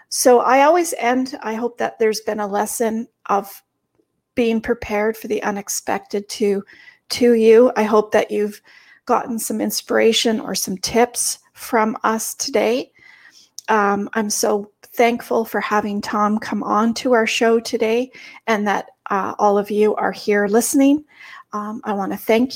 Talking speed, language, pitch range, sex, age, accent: 160 wpm, English, 210-255 Hz, female, 40-59, American